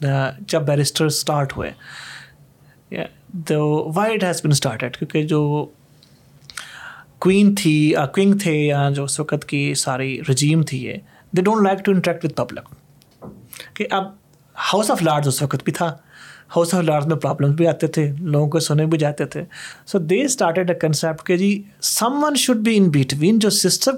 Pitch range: 150-200 Hz